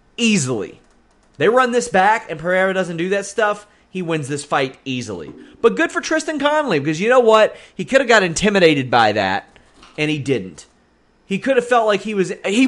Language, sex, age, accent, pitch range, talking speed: English, male, 30-49, American, 130-200 Hz, 205 wpm